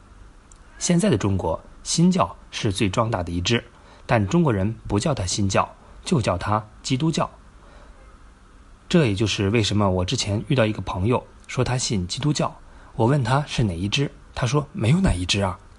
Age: 30-49